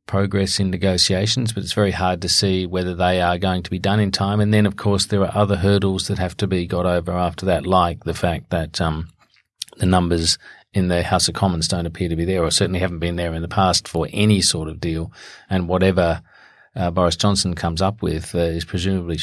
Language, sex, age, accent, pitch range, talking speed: English, male, 40-59, Australian, 85-100 Hz, 235 wpm